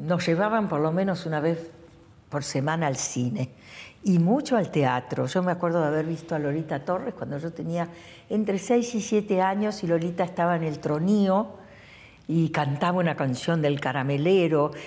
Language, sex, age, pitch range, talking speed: Spanish, female, 60-79, 145-175 Hz, 180 wpm